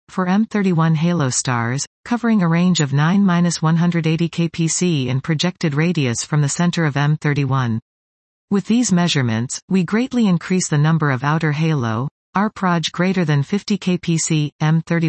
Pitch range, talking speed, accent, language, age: 145-180 Hz, 140 wpm, American, English, 40-59